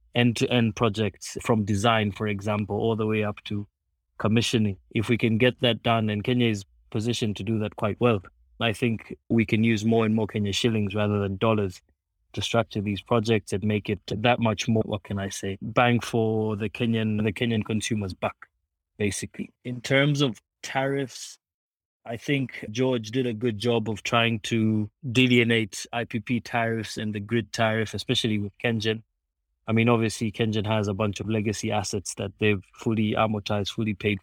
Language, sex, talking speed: English, male, 180 wpm